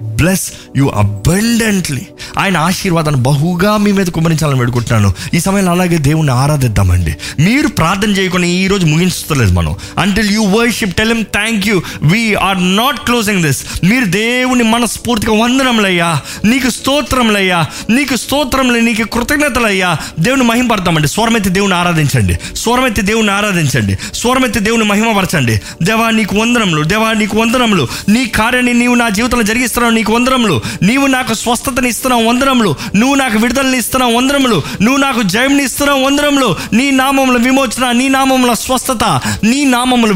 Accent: native